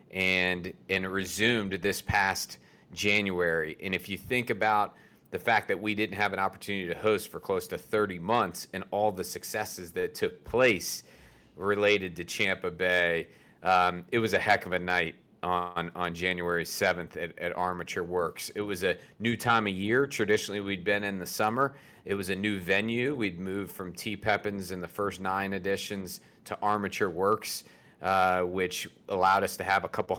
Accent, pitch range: American, 95-105 Hz